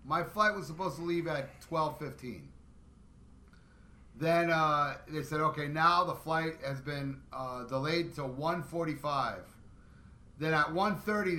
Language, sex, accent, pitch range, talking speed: English, male, American, 130-165 Hz, 130 wpm